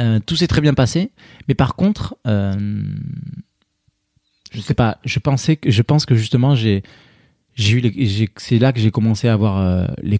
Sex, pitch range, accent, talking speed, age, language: male, 100-125 Hz, French, 200 wpm, 20-39, French